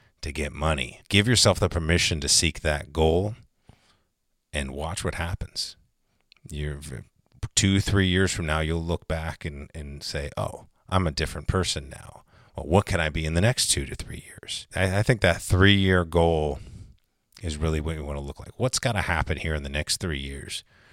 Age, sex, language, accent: 30-49, male, English, American